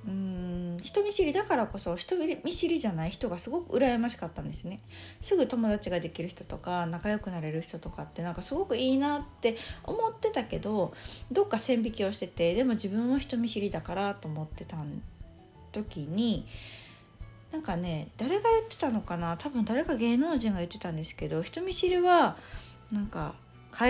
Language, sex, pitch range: Japanese, female, 165-245 Hz